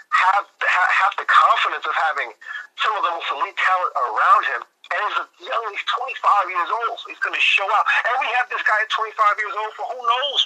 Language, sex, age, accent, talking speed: English, male, 40-59, American, 235 wpm